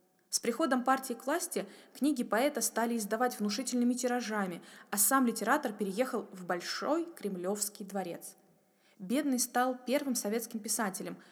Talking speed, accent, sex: 125 wpm, native, female